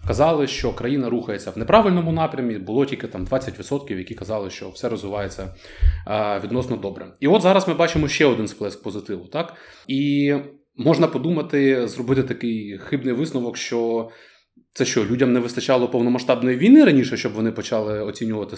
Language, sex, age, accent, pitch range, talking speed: Ukrainian, male, 20-39, native, 105-130 Hz, 155 wpm